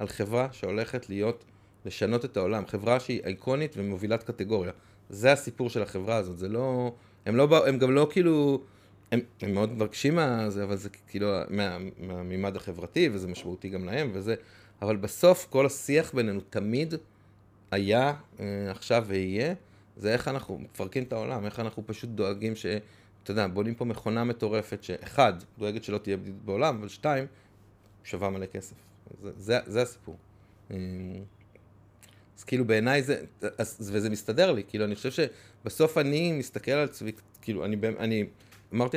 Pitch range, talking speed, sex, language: 100-125 Hz, 155 wpm, male, Hebrew